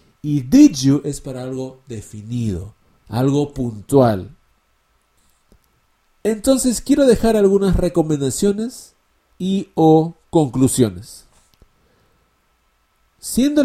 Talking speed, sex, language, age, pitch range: 80 wpm, male, English, 50-69, 130-205 Hz